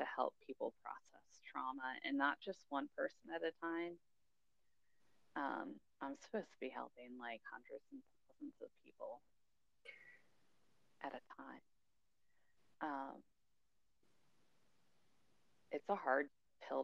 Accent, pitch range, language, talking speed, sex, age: American, 130-175 Hz, English, 120 wpm, female, 30-49